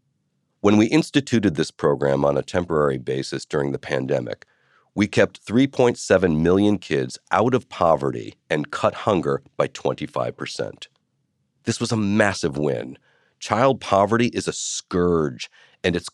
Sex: male